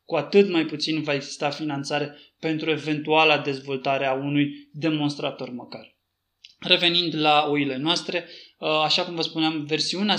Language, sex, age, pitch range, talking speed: Romanian, male, 20-39, 150-175 Hz, 135 wpm